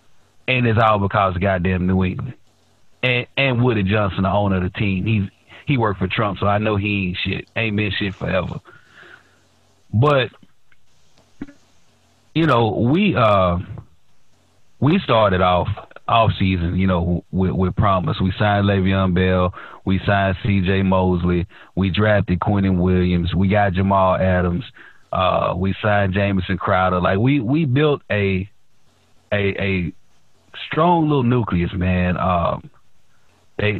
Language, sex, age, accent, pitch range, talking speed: English, male, 30-49, American, 95-110 Hz, 145 wpm